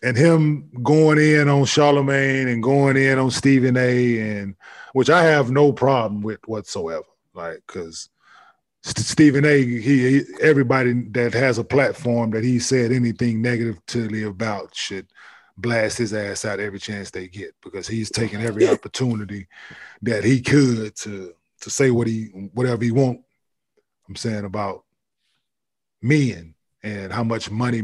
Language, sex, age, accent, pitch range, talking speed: English, male, 20-39, American, 110-135 Hz, 150 wpm